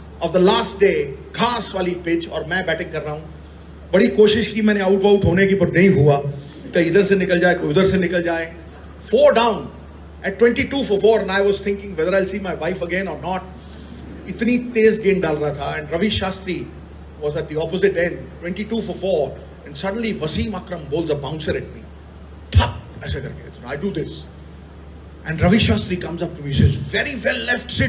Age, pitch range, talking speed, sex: 30-49, 140-200 Hz, 100 wpm, male